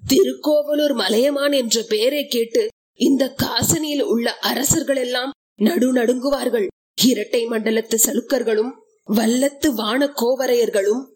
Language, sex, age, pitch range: Tamil, female, 20-39, 235-285 Hz